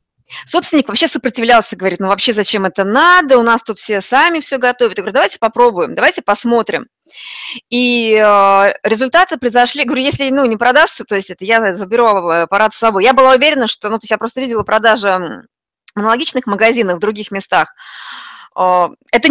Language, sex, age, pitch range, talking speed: Russian, female, 20-39, 190-250 Hz, 180 wpm